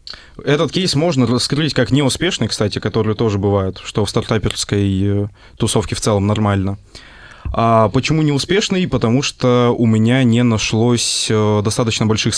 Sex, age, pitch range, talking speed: male, 20-39, 105-125 Hz, 135 wpm